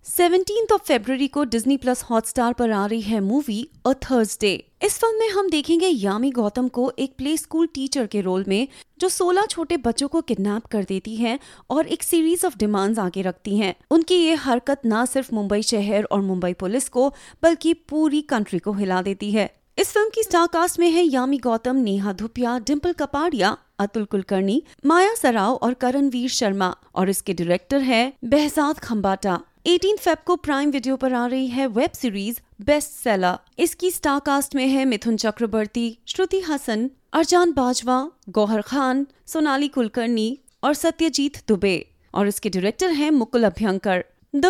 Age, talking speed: 30-49, 170 wpm